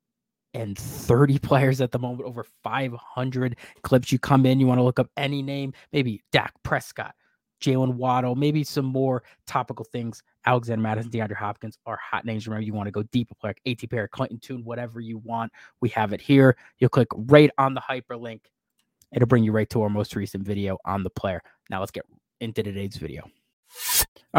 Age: 20-39